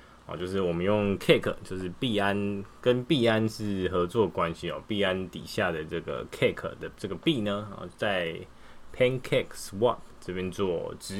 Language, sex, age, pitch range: Chinese, male, 20-39, 90-120 Hz